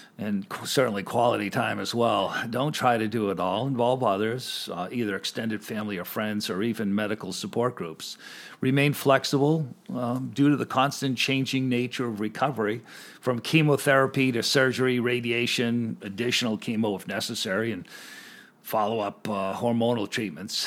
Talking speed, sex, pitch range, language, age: 140 wpm, male, 115-135 Hz, English, 50-69